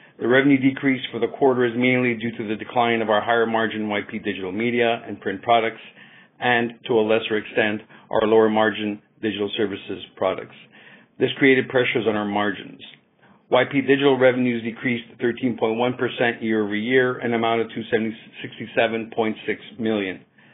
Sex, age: male, 50-69